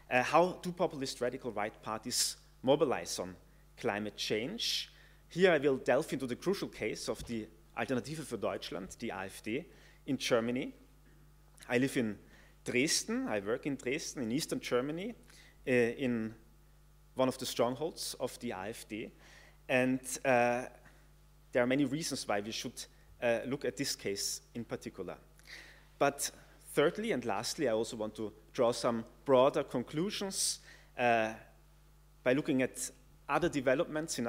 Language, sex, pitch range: English, male, 115-145 Hz